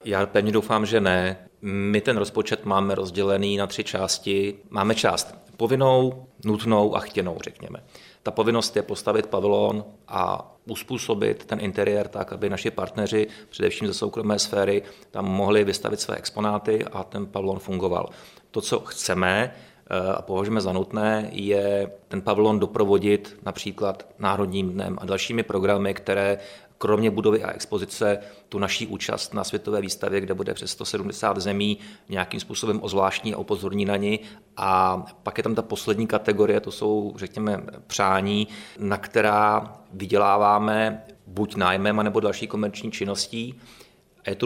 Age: 30-49